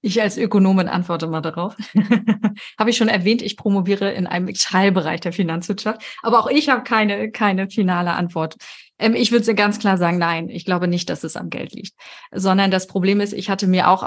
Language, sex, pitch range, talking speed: German, female, 180-210 Hz, 205 wpm